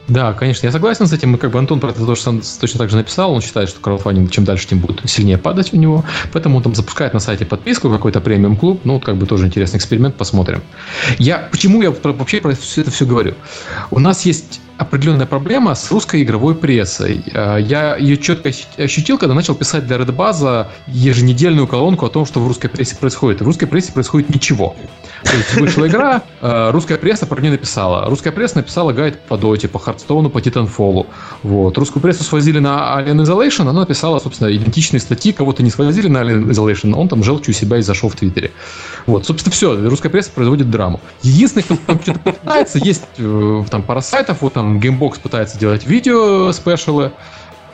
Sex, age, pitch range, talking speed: male, 20-39, 110-155 Hz, 195 wpm